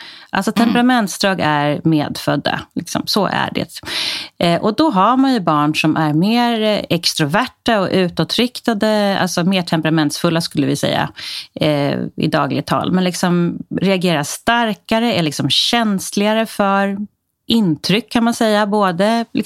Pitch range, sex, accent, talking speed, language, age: 170-230 Hz, female, Swedish, 120 wpm, English, 30-49